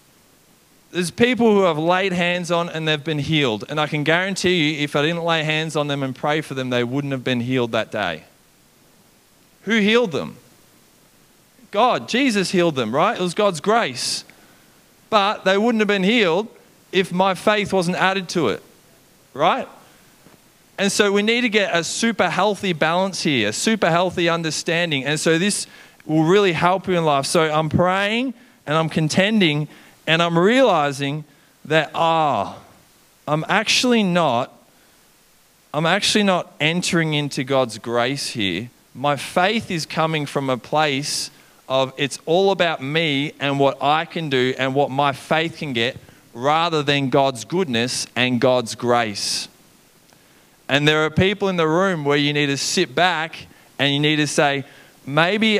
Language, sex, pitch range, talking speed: English, male, 140-185 Hz, 165 wpm